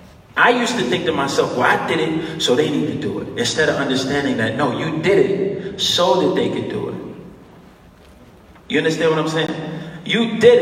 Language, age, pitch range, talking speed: English, 30-49, 110-155 Hz, 210 wpm